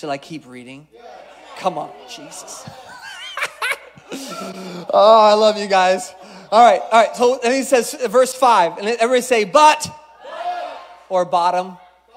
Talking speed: 145 wpm